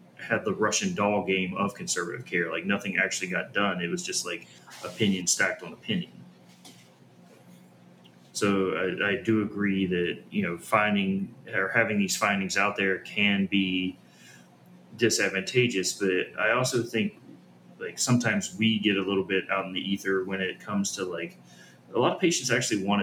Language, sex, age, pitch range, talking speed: English, male, 20-39, 90-105 Hz, 170 wpm